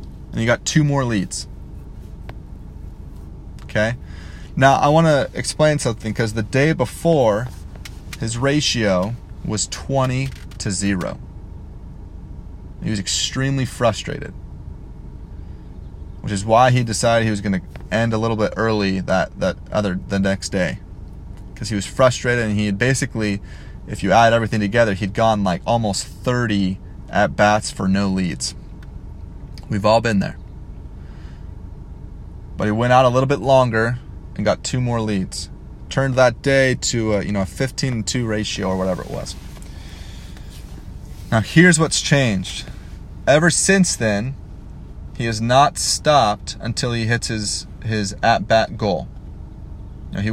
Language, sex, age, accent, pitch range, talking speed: English, male, 30-49, American, 90-120 Hz, 140 wpm